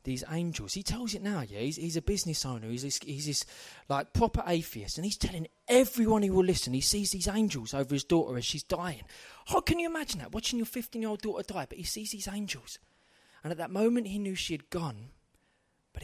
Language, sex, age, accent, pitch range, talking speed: English, male, 20-39, British, 170-255 Hz, 235 wpm